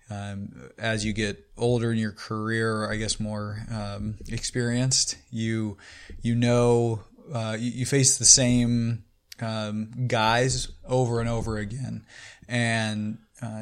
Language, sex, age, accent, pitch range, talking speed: English, male, 20-39, American, 105-120 Hz, 130 wpm